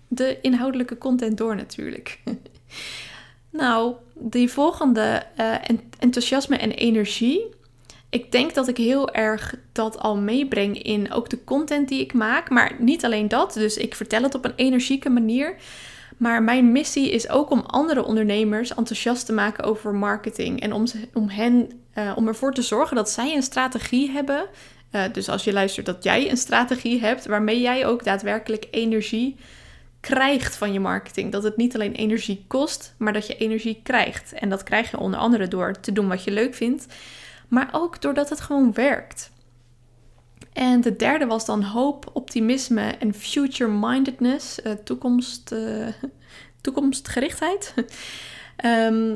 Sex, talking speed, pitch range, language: female, 155 wpm, 215-260 Hz, Dutch